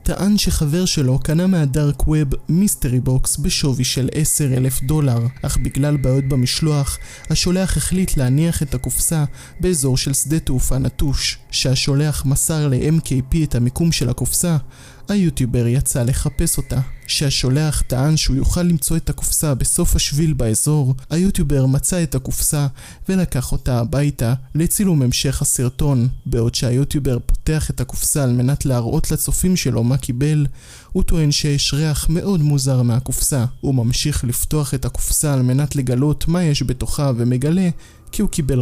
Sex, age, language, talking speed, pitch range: male, 20-39, Hebrew, 145 wpm, 130-155 Hz